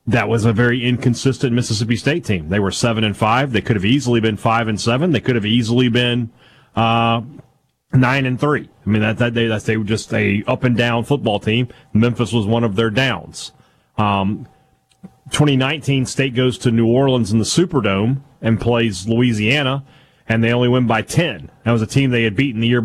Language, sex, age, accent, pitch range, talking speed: English, male, 30-49, American, 115-135 Hz, 210 wpm